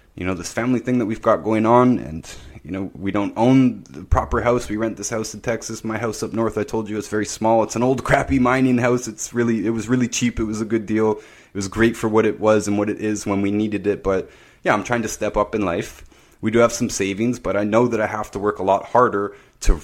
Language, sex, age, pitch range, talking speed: English, male, 20-39, 100-125 Hz, 280 wpm